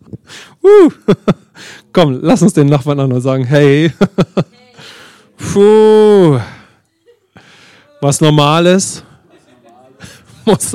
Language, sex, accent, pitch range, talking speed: English, male, German, 130-175 Hz, 75 wpm